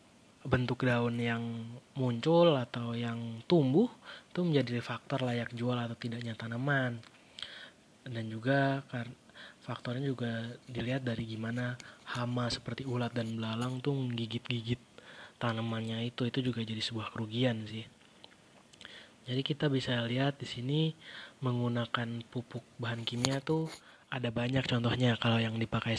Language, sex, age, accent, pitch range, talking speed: Indonesian, male, 20-39, native, 115-130 Hz, 125 wpm